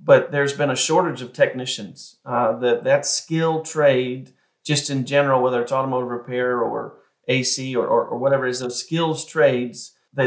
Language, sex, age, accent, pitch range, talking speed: English, male, 30-49, American, 120-135 Hz, 175 wpm